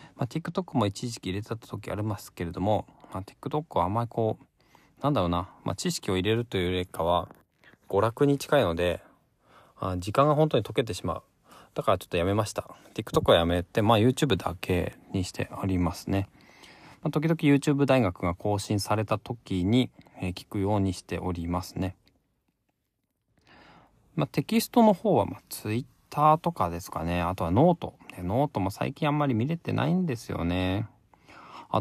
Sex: male